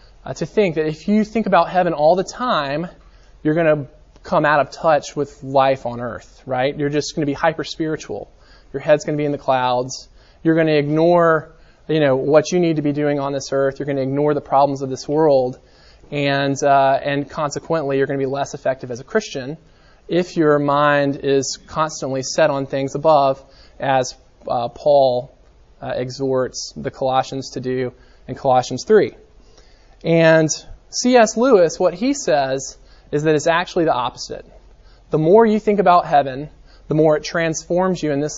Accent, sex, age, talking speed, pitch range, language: American, male, 20-39, 190 wpm, 135-165 Hz, English